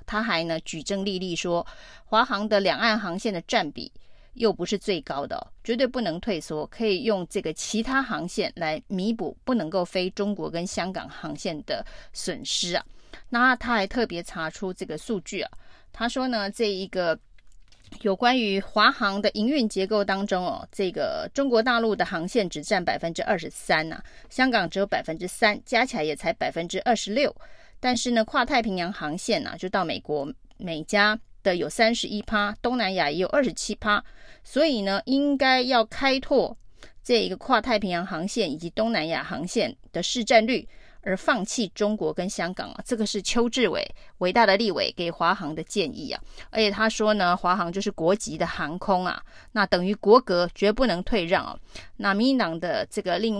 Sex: female